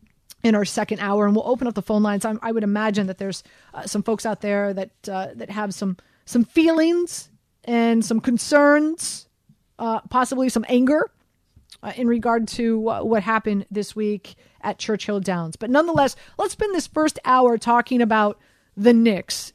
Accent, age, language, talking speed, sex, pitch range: American, 30-49, English, 180 wpm, female, 210-255 Hz